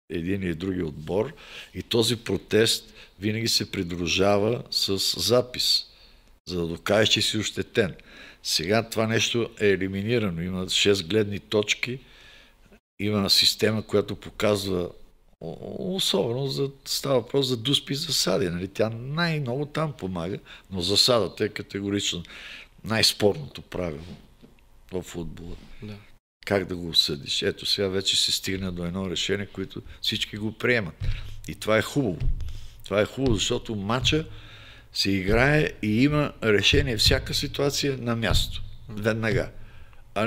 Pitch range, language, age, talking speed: 95-130 Hz, Bulgarian, 50-69, 135 wpm